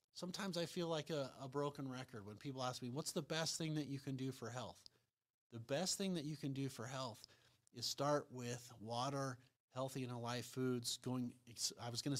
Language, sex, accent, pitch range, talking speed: English, male, American, 120-145 Hz, 210 wpm